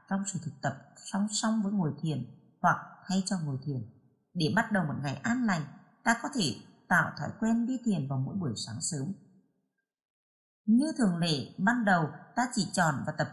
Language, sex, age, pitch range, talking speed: Vietnamese, female, 20-39, 150-220 Hz, 200 wpm